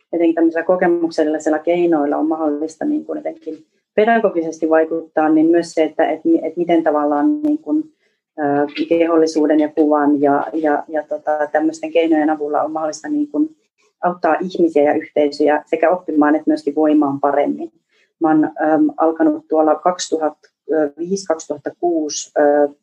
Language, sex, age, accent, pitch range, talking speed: Finnish, female, 30-49, native, 150-175 Hz, 135 wpm